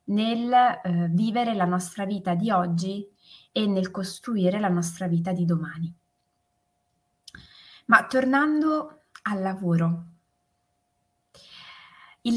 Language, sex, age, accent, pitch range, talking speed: Italian, female, 20-39, native, 175-225 Hz, 100 wpm